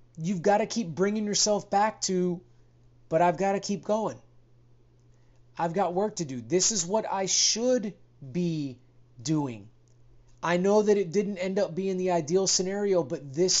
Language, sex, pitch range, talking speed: English, male, 125-190 Hz, 170 wpm